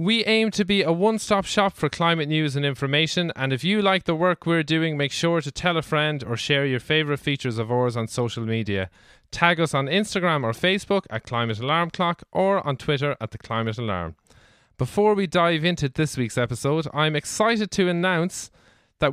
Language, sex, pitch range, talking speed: English, male, 125-175 Hz, 205 wpm